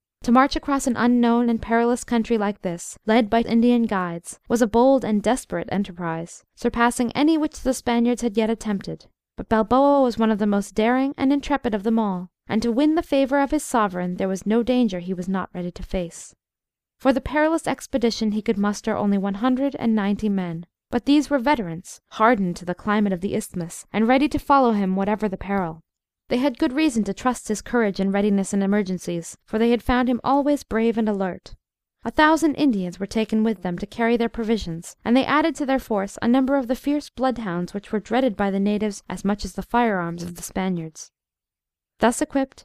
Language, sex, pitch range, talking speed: English, female, 200-260 Hz, 210 wpm